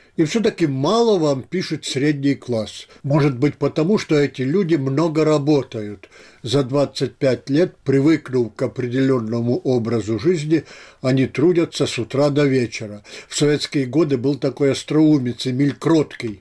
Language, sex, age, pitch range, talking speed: Russian, male, 60-79, 125-170 Hz, 130 wpm